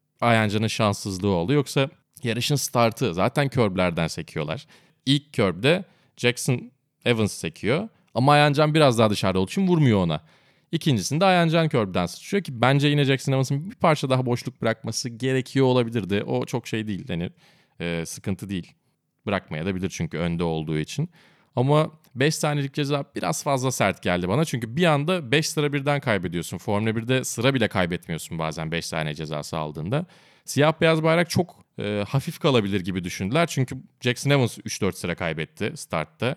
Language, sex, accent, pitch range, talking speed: Turkish, male, native, 100-145 Hz, 155 wpm